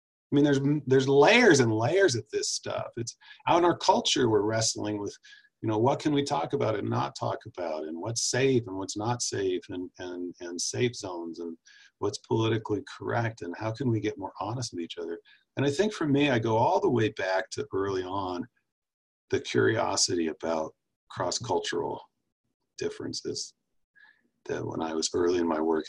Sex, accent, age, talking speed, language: male, American, 40-59, 190 wpm, English